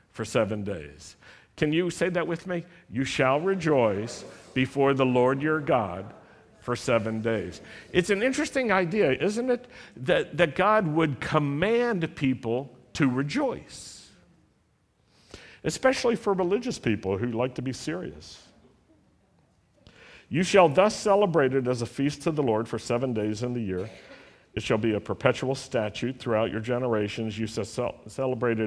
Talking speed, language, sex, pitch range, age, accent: 150 wpm, English, male, 110-145 Hz, 50-69, American